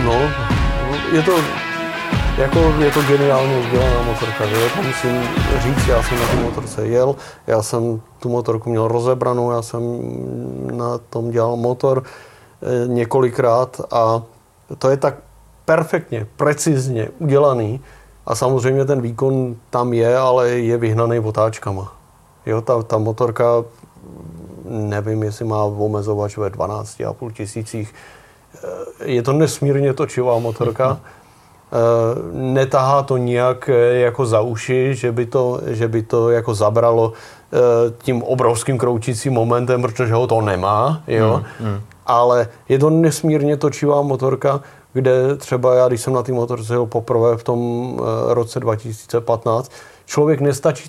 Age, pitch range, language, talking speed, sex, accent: 30-49, 115-140 Hz, Czech, 130 wpm, male, native